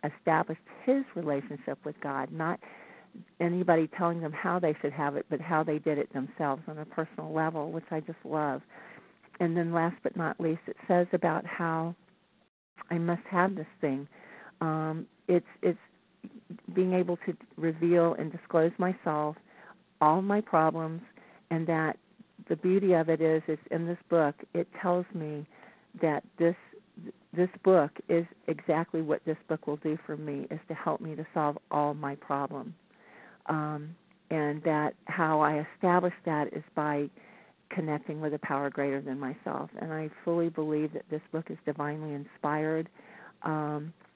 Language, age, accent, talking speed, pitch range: English, 50-69, American, 160 wpm, 150-175 Hz